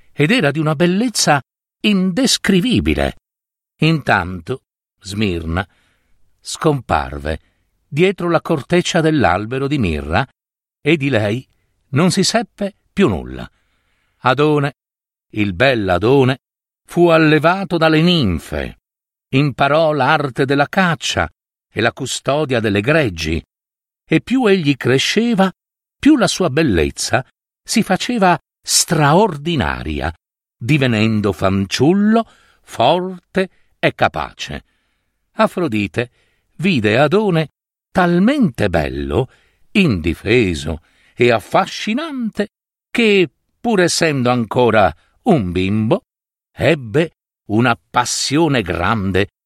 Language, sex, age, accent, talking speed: Italian, male, 60-79, native, 90 wpm